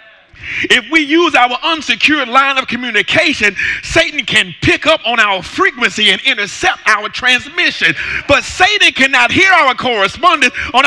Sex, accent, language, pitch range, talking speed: male, American, English, 230-300 Hz, 145 wpm